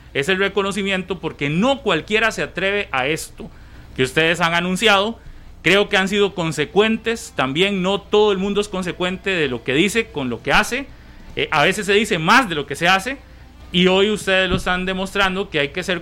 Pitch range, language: 155-205 Hz, Spanish